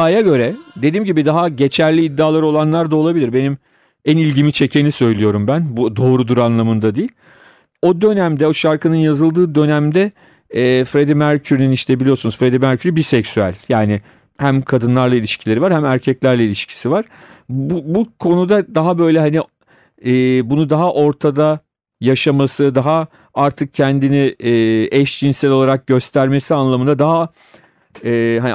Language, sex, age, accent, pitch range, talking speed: Turkish, male, 40-59, native, 125-155 Hz, 135 wpm